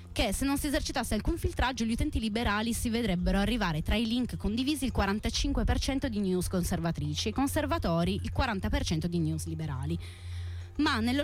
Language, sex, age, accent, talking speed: Italian, female, 20-39, native, 170 wpm